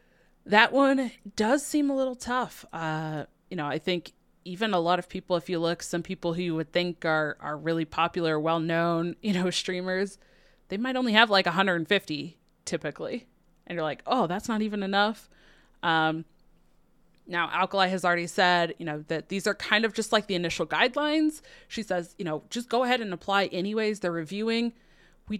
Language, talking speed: English, 190 wpm